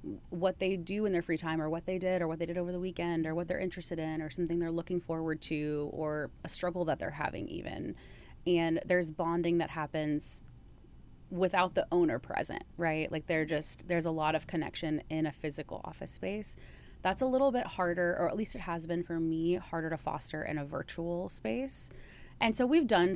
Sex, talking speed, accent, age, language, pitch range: female, 215 wpm, American, 30-49, English, 155-175 Hz